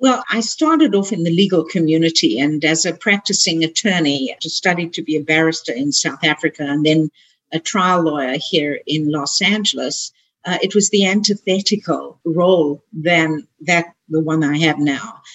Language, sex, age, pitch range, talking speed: English, female, 50-69, 155-190 Hz, 170 wpm